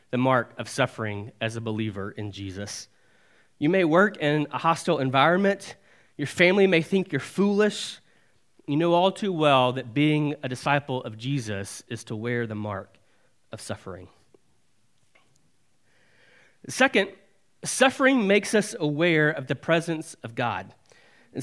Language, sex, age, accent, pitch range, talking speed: English, male, 30-49, American, 125-180 Hz, 145 wpm